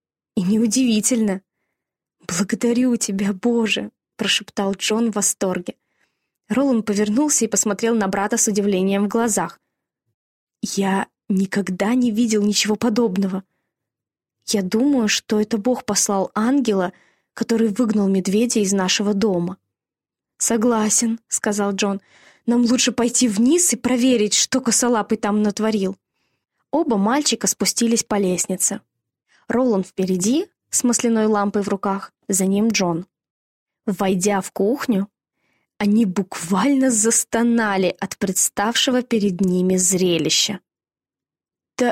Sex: female